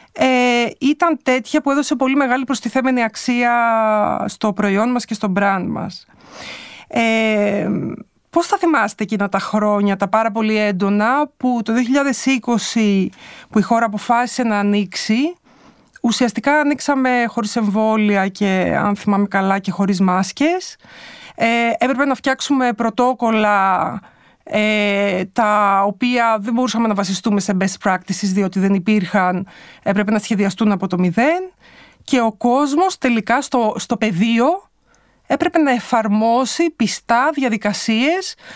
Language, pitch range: Greek, 205-280 Hz